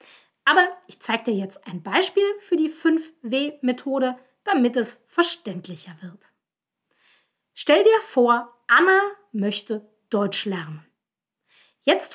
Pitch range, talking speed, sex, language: 200-335 Hz, 110 wpm, female, German